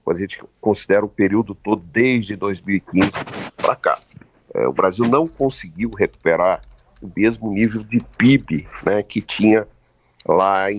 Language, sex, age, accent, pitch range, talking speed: Portuguese, male, 50-69, Brazilian, 95-135 Hz, 145 wpm